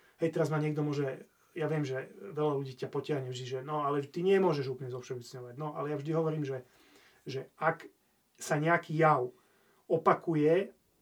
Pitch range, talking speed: 135-165 Hz, 175 wpm